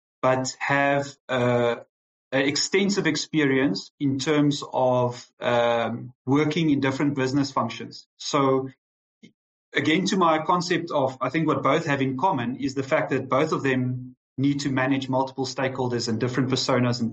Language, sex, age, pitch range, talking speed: English, male, 30-49, 125-150 Hz, 150 wpm